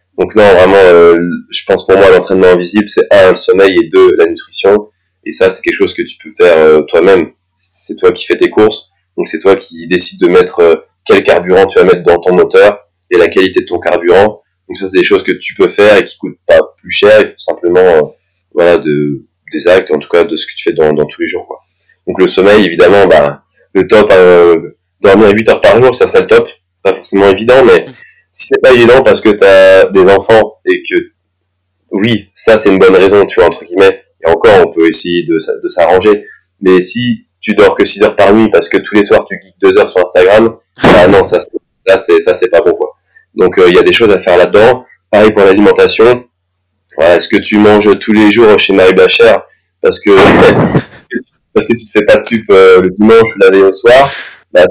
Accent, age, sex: French, 20-39, male